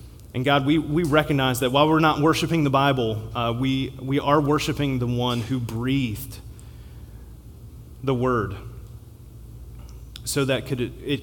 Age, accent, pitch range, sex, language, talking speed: 30-49, American, 105-130 Hz, male, English, 145 wpm